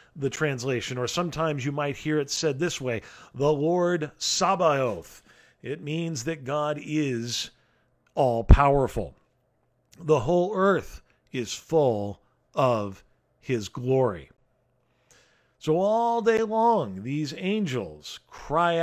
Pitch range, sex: 125-170 Hz, male